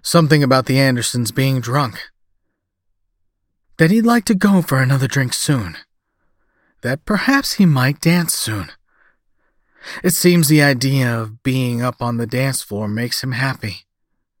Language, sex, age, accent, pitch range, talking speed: English, male, 40-59, American, 100-150 Hz, 145 wpm